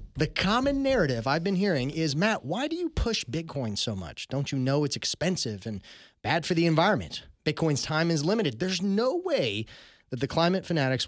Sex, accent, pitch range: male, American, 130-185 Hz